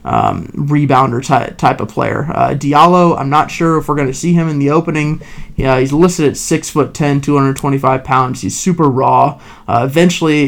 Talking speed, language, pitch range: 200 wpm, English, 135-155 Hz